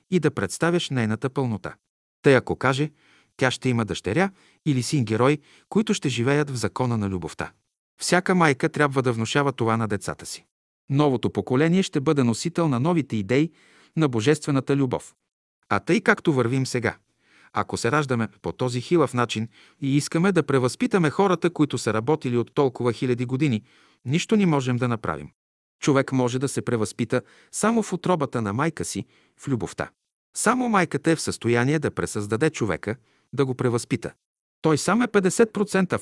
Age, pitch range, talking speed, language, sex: 50-69, 120-160 Hz, 165 wpm, Bulgarian, male